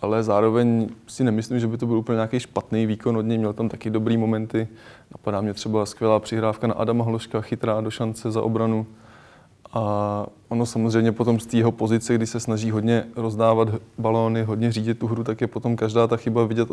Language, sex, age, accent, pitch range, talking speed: Czech, male, 20-39, native, 110-115 Hz, 200 wpm